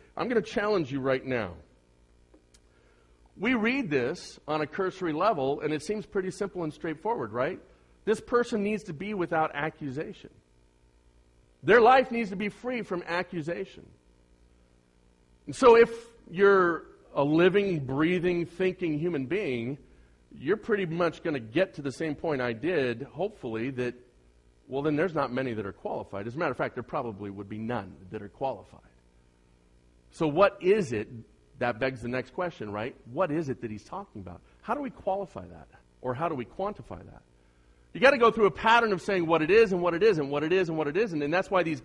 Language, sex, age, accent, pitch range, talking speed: English, male, 50-69, American, 120-200 Hz, 195 wpm